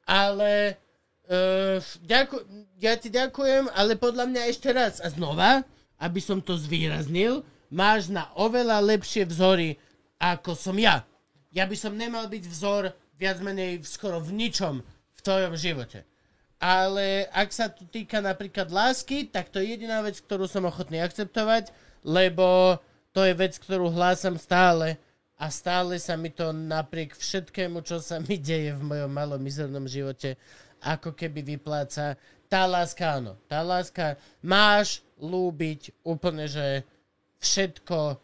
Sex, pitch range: male, 155-200 Hz